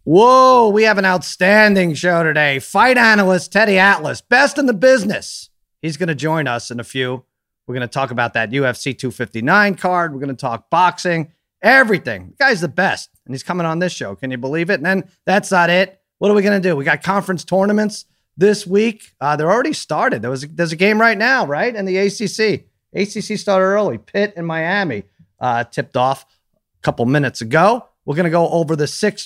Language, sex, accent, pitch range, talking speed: English, male, American, 145-200 Hz, 215 wpm